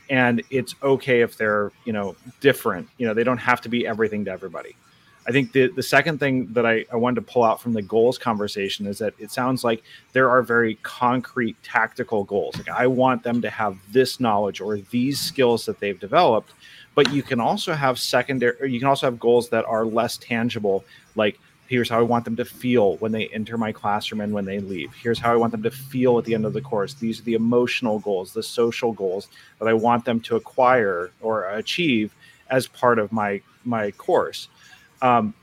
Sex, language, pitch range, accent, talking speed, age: male, English, 110-125 Hz, American, 220 wpm, 30-49